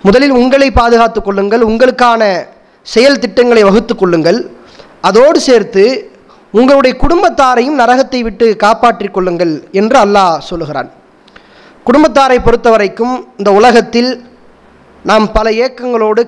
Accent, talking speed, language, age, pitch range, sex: Indian, 105 wpm, English, 20-39, 210-265 Hz, male